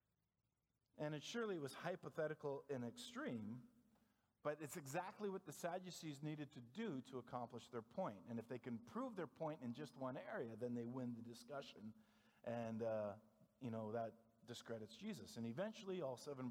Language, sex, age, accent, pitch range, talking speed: English, male, 50-69, American, 115-155 Hz, 170 wpm